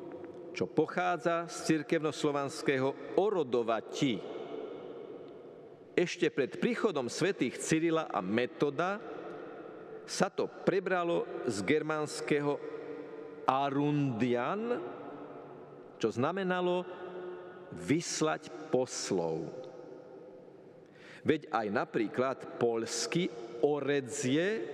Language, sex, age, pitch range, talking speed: Slovak, male, 50-69, 130-180 Hz, 65 wpm